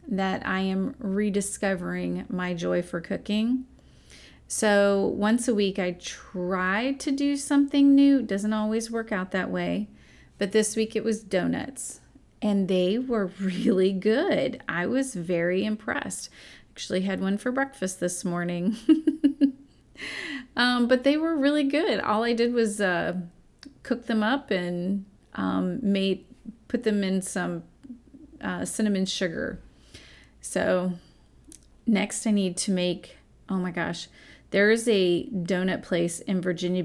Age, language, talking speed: 30-49, English, 145 wpm